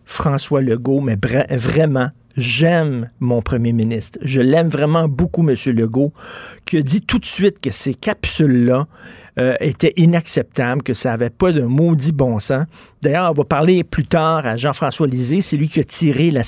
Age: 50-69